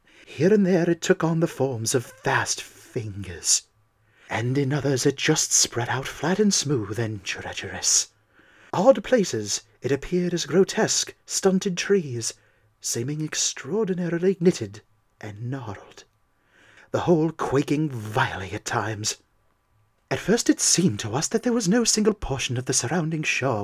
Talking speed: 145 wpm